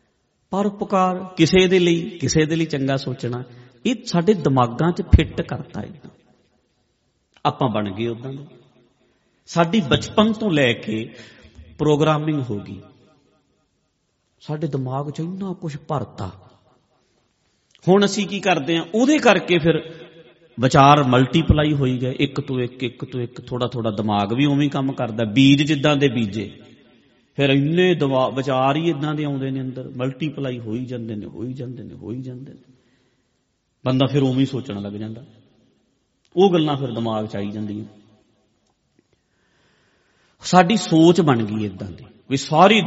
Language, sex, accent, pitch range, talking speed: English, male, Indian, 125-165 Hz, 145 wpm